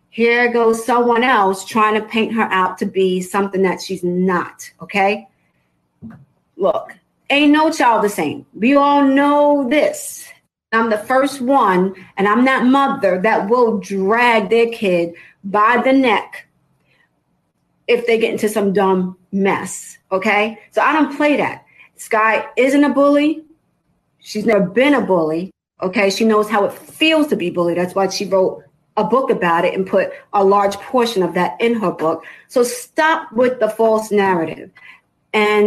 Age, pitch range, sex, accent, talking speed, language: 40-59, 190-240 Hz, female, American, 165 wpm, English